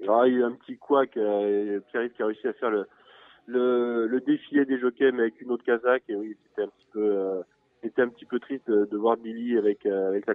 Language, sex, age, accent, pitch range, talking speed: French, male, 20-39, French, 115-145 Hz, 245 wpm